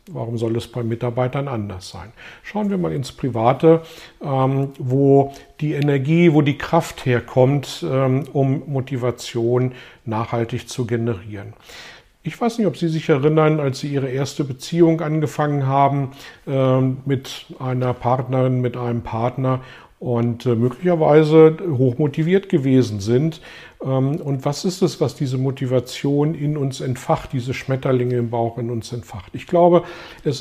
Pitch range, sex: 125-155 Hz, male